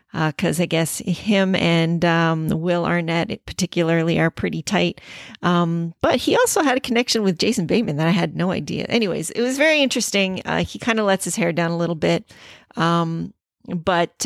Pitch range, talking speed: 165-185 Hz, 195 wpm